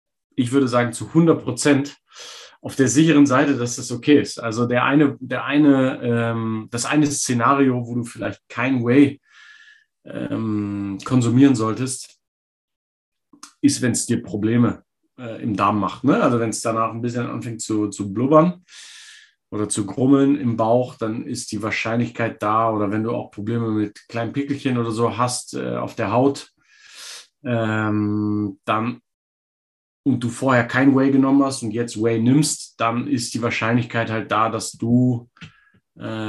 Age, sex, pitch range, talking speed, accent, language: 30-49, male, 110-135 Hz, 160 wpm, German, German